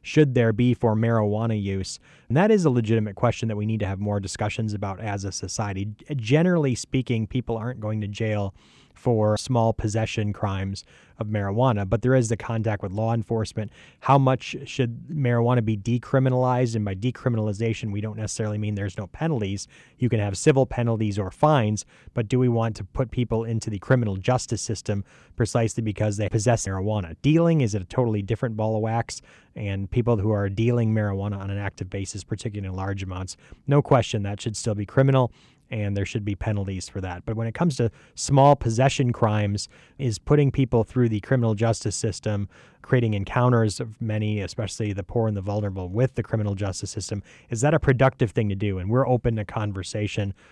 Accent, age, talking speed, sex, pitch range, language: American, 30-49, 195 wpm, male, 100-120 Hz, English